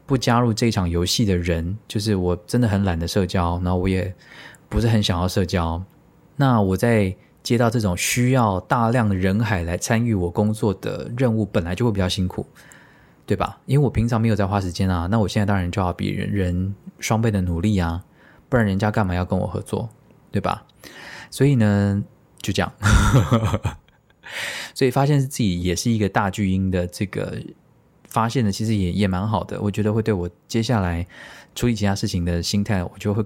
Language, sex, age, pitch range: Chinese, male, 20-39, 95-120 Hz